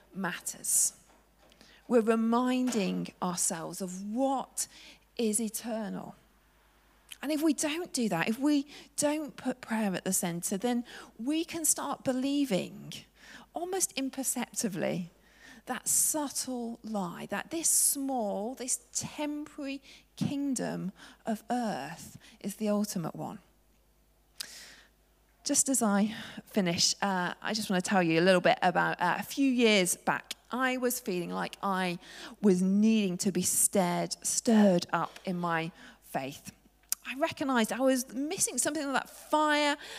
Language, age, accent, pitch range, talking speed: English, 40-59, British, 190-270 Hz, 130 wpm